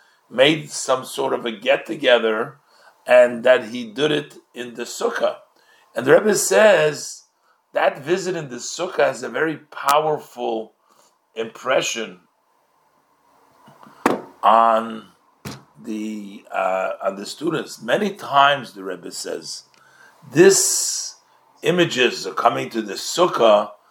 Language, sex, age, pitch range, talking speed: English, male, 50-69, 110-155 Hz, 115 wpm